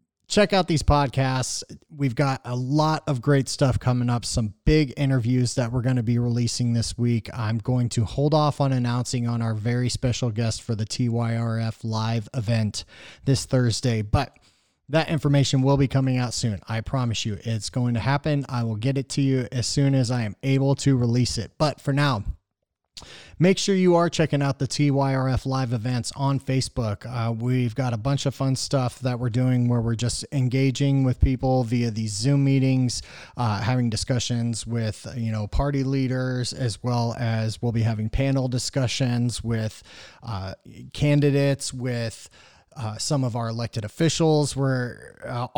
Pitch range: 120-140 Hz